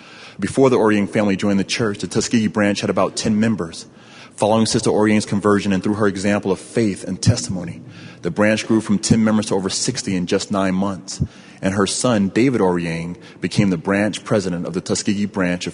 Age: 30-49